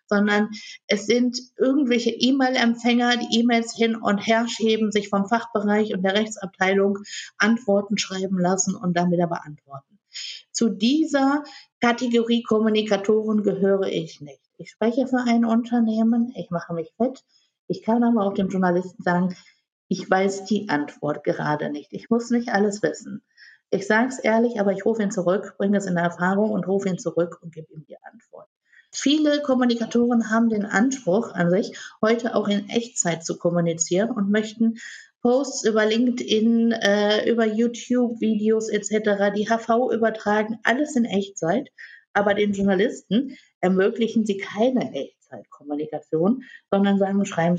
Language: English